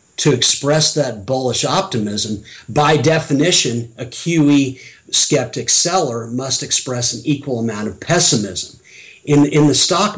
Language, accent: English, American